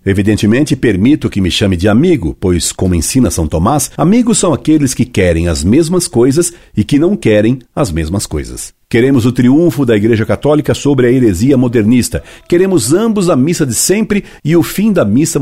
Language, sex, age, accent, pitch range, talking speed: Portuguese, male, 60-79, Brazilian, 95-135 Hz, 185 wpm